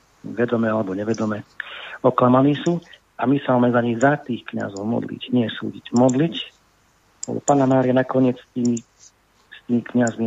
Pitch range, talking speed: 110-130 Hz, 140 wpm